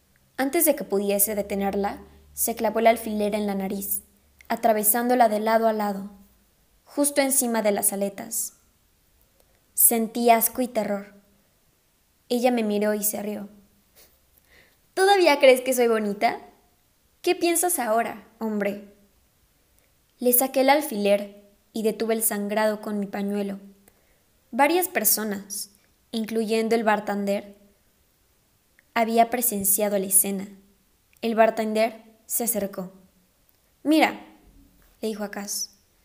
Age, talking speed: 20-39, 115 wpm